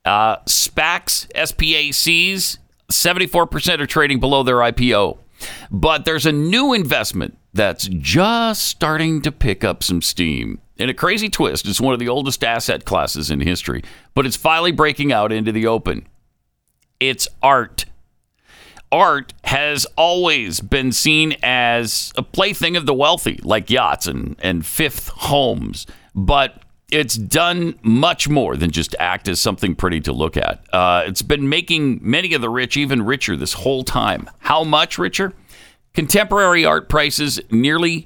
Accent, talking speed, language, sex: American, 150 wpm, English, male